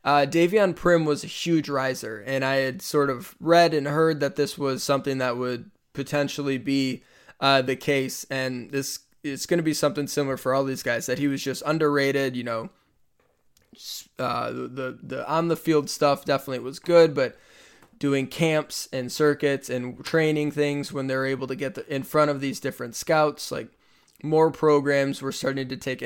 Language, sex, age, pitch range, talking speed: English, male, 20-39, 135-155 Hz, 190 wpm